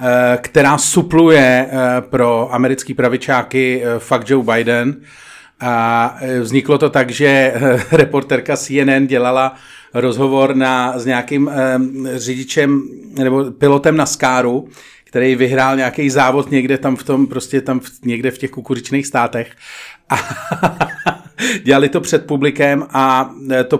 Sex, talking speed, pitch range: male, 120 wpm, 130-150 Hz